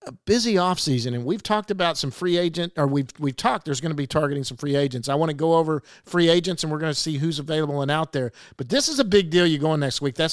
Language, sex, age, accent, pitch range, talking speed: English, male, 50-69, American, 140-205 Hz, 295 wpm